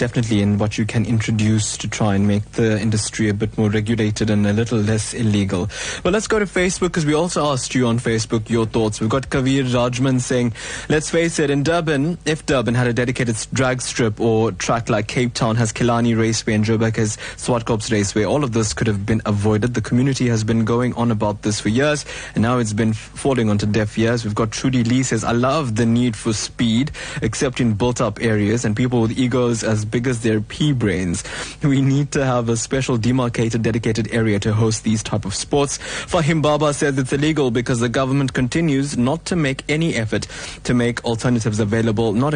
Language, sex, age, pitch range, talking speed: English, male, 20-39, 110-130 Hz, 210 wpm